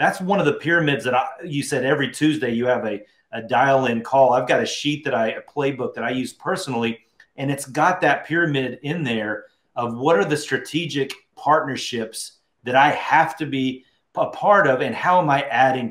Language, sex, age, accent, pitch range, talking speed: English, male, 30-49, American, 125-160 Hz, 210 wpm